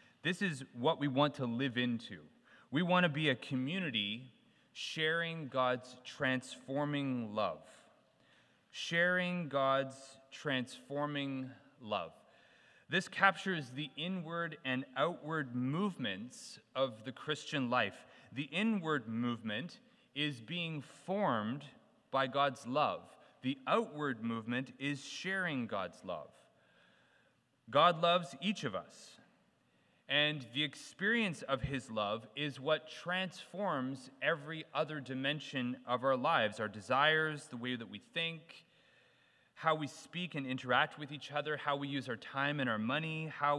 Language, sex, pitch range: English, male, 130-165 Hz